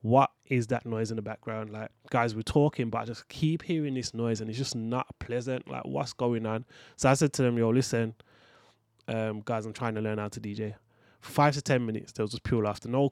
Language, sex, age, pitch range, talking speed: English, male, 20-39, 110-135 Hz, 240 wpm